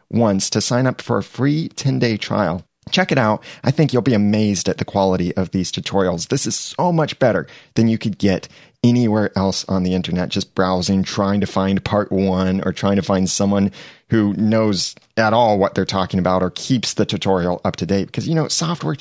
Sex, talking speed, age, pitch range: male, 215 wpm, 30-49, 95-130 Hz